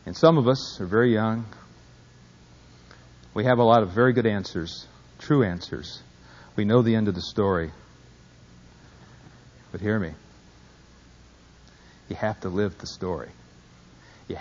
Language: English